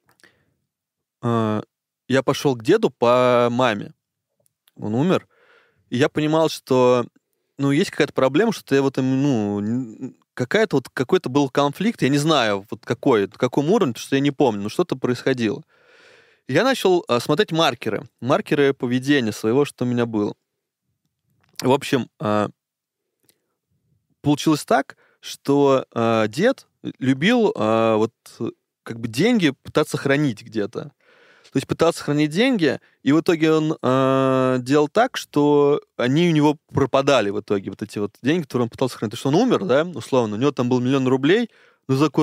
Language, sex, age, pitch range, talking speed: Russian, male, 20-39, 120-150 Hz, 150 wpm